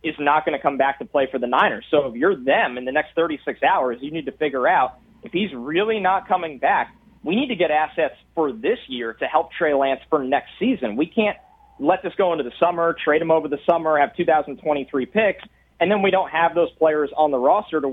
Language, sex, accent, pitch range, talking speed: English, male, American, 140-170 Hz, 245 wpm